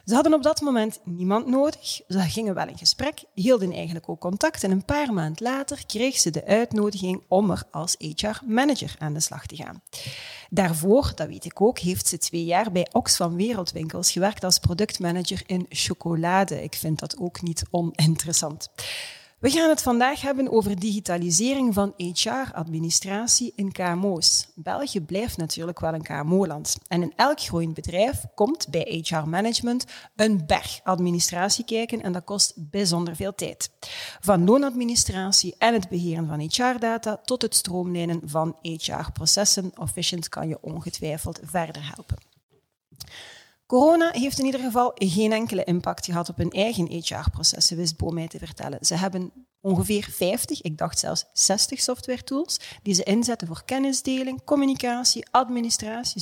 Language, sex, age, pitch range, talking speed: Dutch, female, 40-59, 170-240 Hz, 155 wpm